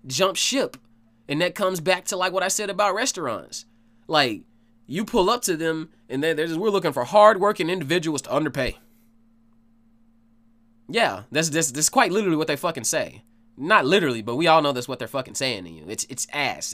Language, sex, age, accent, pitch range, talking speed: English, male, 20-39, American, 115-165 Hz, 195 wpm